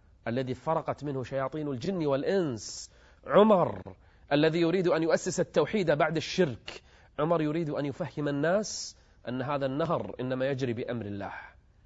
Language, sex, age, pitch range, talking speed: Arabic, male, 30-49, 105-155 Hz, 130 wpm